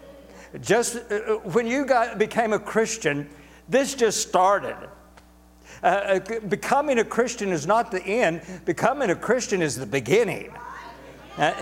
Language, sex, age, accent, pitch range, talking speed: English, male, 60-79, American, 135-165 Hz, 130 wpm